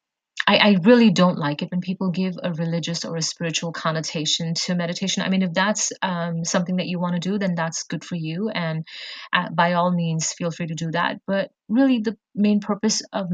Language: English